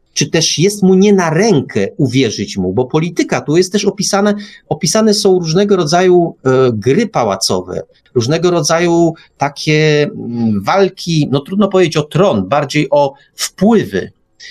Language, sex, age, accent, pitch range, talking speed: Polish, male, 40-59, native, 130-190 Hz, 145 wpm